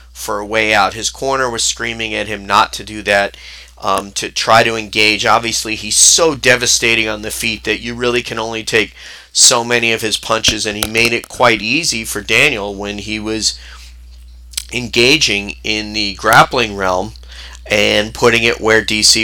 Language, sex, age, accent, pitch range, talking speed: English, male, 30-49, American, 100-115 Hz, 180 wpm